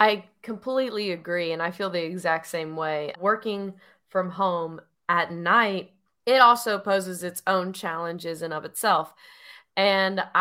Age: 20-39